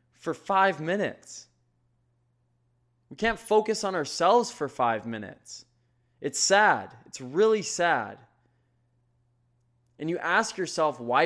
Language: English